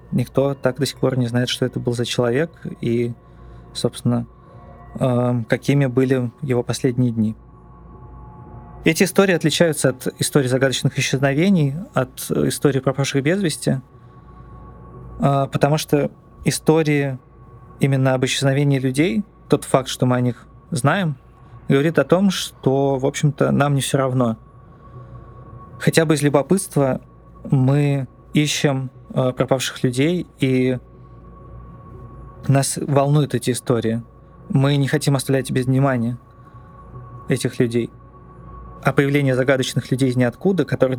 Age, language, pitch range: 20-39, Russian, 125-145 Hz